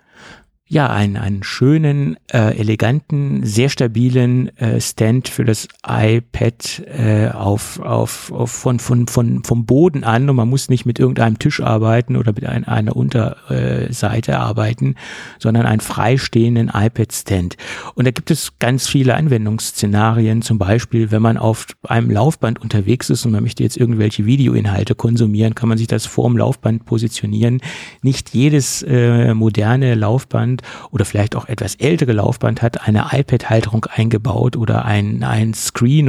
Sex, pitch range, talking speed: male, 110-130 Hz, 150 wpm